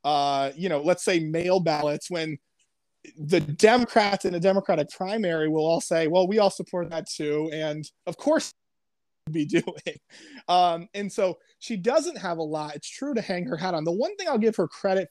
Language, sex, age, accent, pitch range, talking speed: English, male, 20-39, American, 160-200 Hz, 200 wpm